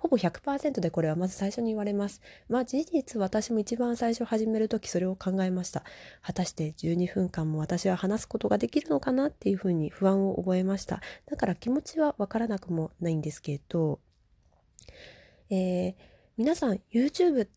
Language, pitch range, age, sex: Japanese, 180-240 Hz, 20-39, female